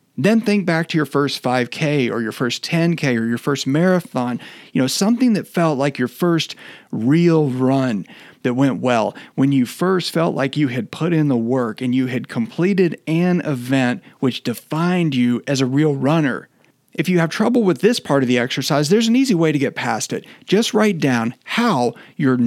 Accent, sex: American, male